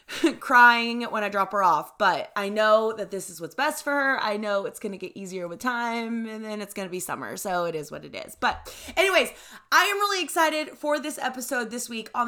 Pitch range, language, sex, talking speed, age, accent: 190-240 Hz, English, female, 245 wpm, 20-39, American